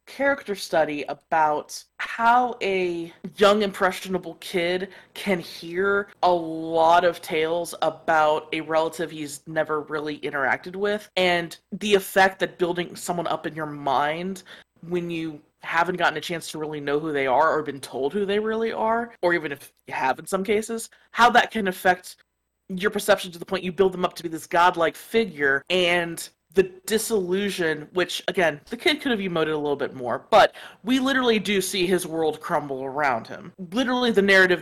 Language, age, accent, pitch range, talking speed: English, 20-39, American, 155-195 Hz, 180 wpm